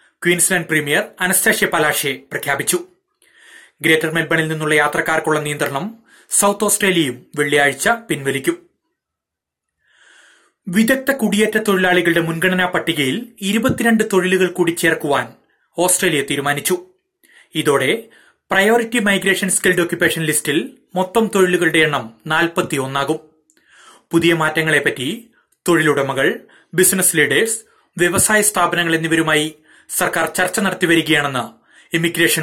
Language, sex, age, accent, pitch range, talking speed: Malayalam, male, 30-49, native, 140-185 Hz, 85 wpm